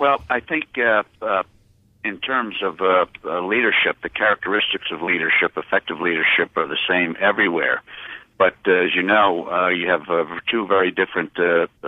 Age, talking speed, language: 60-79, 170 wpm, English